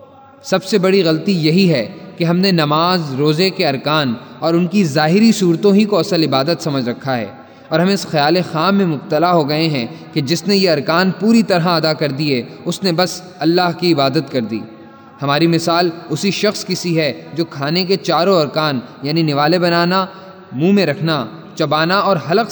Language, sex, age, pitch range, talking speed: Urdu, male, 20-39, 145-190 Hz, 195 wpm